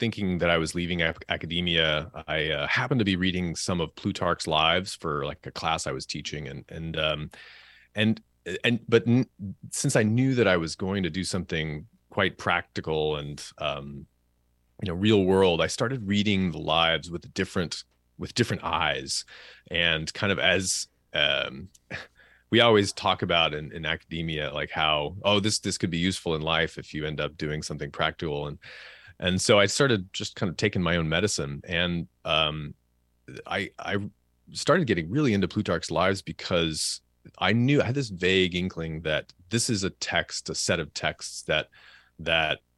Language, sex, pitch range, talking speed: English, male, 75-100 Hz, 180 wpm